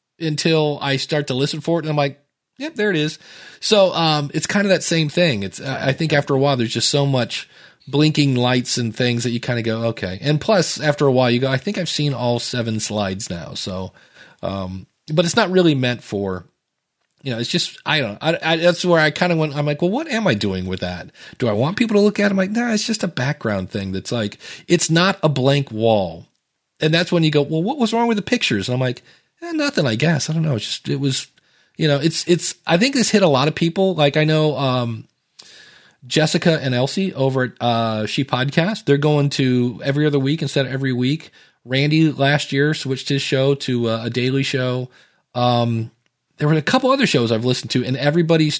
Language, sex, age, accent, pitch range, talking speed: English, male, 40-59, American, 125-165 Hz, 245 wpm